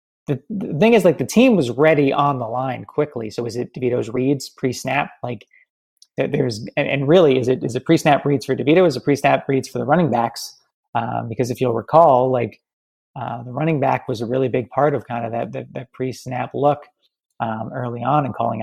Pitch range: 125-150 Hz